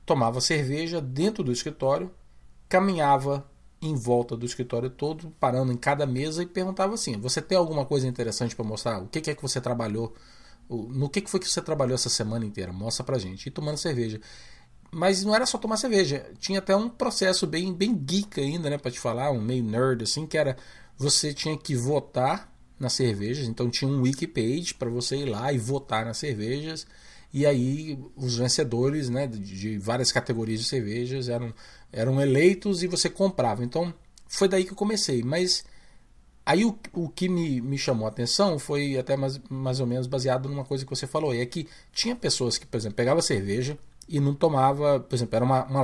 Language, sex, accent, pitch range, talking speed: Portuguese, male, Brazilian, 120-155 Hz, 200 wpm